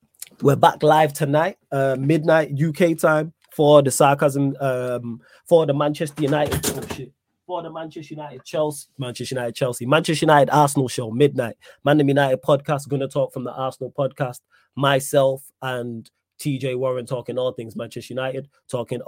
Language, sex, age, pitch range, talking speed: English, male, 20-39, 120-140 Hz, 160 wpm